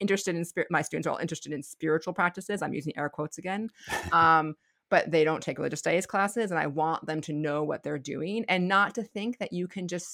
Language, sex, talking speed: English, female, 235 wpm